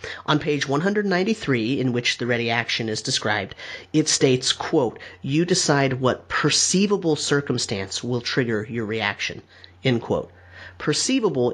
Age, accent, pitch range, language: 30-49, American, 125-170 Hz, English